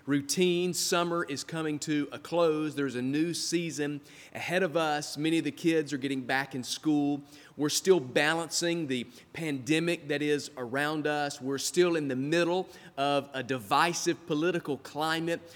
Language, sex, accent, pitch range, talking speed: English, male, American, 140-180 Hz, 160 wpm